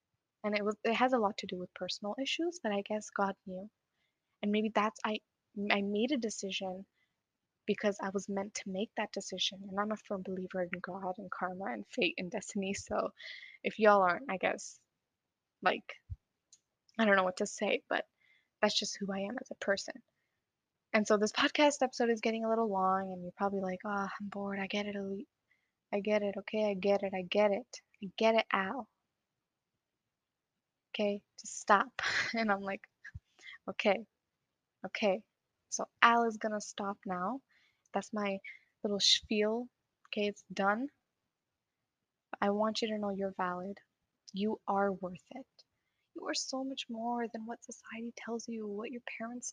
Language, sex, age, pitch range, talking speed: English, female, 10-29, 195-230 Hz, 180 wpm